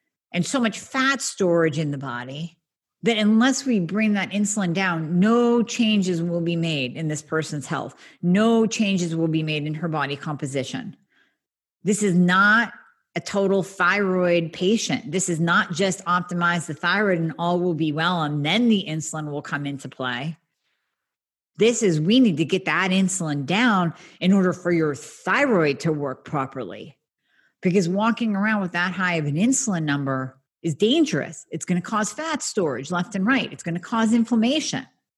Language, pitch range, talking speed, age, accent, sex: English, 165-215 Hz, 175 wpm, 40-59, American, female